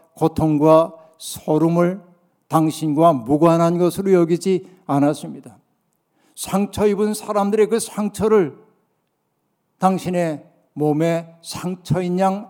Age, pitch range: 60-79, 160-195 Hz